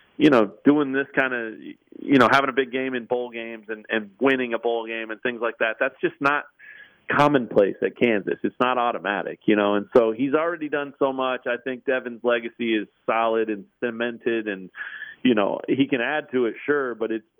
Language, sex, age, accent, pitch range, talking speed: English, male, 40-59, American, 105-125 Hz, 215 wpm